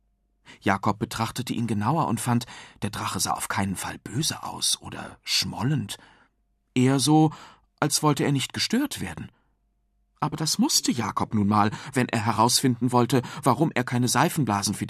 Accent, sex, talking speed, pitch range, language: German, male, 155 wpm, 105-150 Hz, German